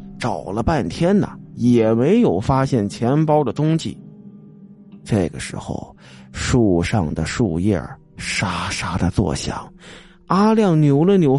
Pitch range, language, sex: 105-165 Hz, Chinese, male